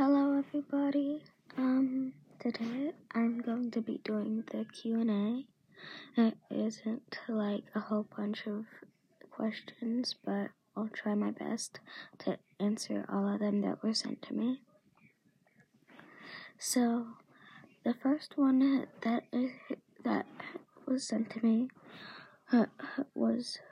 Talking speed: 115 wpm